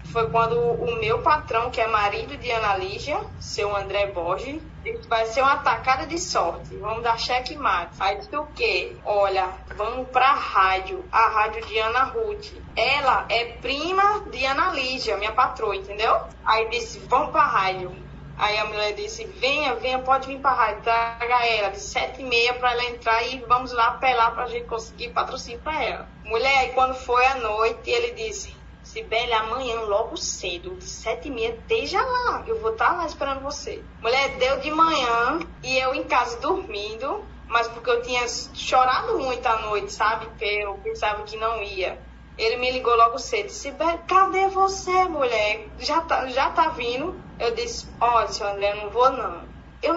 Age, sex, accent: 10-29, female, Brazilian